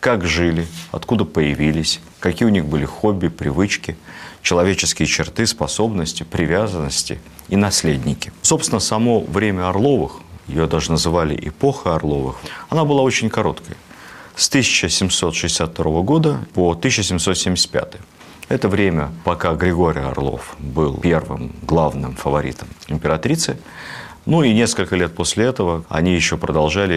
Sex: male